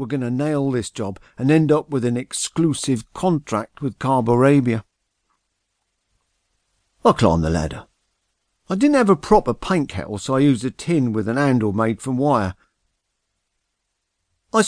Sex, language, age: male, English, 50-69